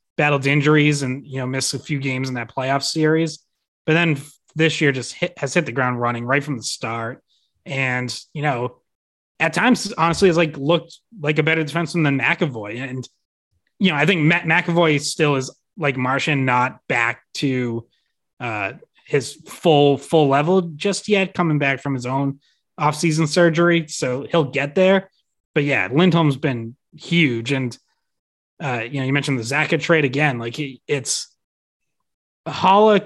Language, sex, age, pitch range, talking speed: English, male, 30-49, 130-165 Hz, 165 wpm